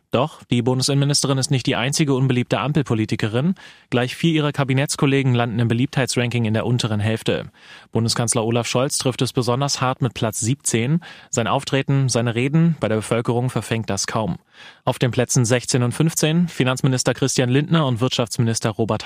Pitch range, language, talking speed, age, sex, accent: 120-140 Hz, German, 165 wpm, 30-49, male, German